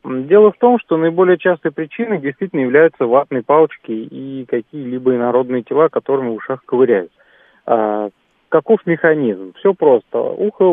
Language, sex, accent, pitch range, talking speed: Russian, male, native, 130-205 Hz, 140 wpm